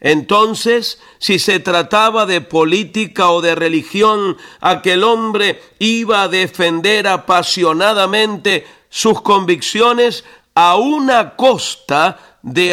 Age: 50-69